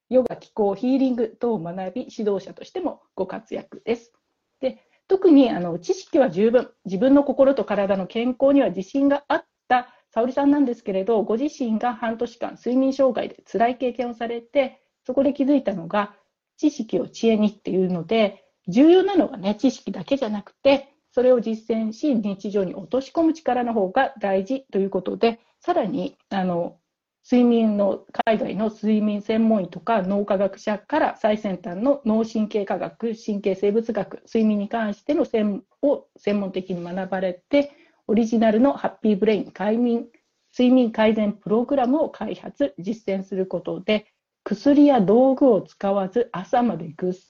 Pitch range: 200-265 Hz